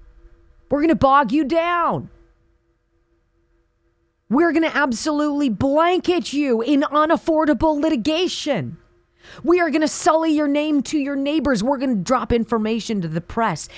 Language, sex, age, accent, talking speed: English, female, 30-49, American, 145 wpm